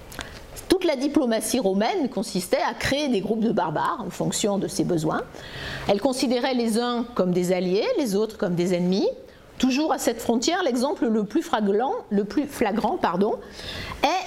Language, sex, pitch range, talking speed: French, female, 205-285 Hz, 155 wpm